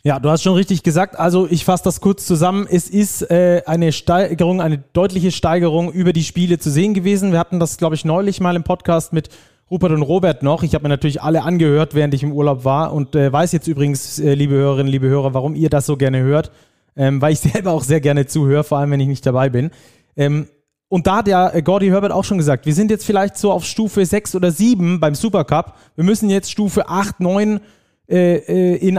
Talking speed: 230 wpm